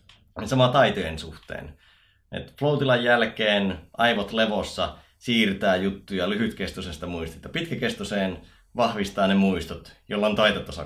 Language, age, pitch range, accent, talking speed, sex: Finnish, 30-49, 90-125 Hz, native, 105 wpm, male